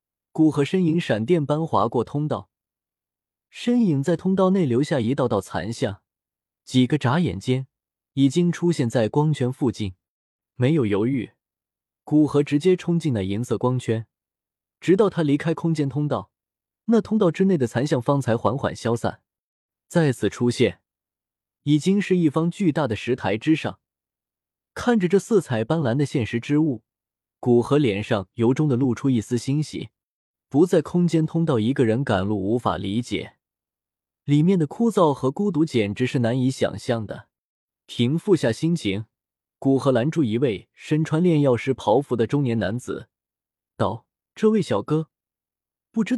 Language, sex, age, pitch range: Chinese, male, 20-39, 115-160 Hz